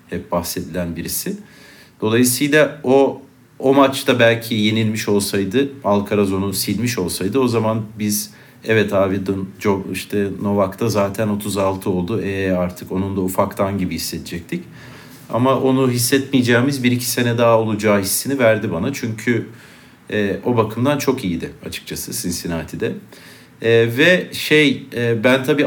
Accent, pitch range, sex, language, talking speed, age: native, 95-125 Hz, male, Turkish, 135 wpm, 50-69